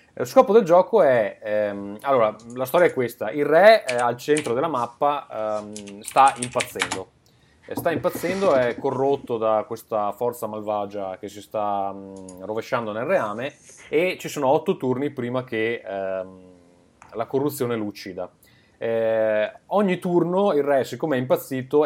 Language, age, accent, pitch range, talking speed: Italian, 30-49, native, 105-140 Hz, 150 wpm